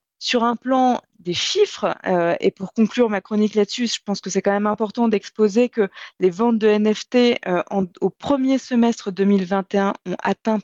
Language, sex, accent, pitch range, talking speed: French, female, French, 190-240 Hz, 180 wpm